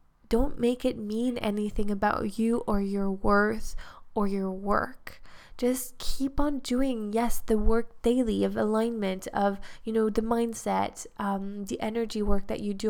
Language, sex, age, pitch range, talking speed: English, female, 10-29, 195-225 Hz, 165 wpm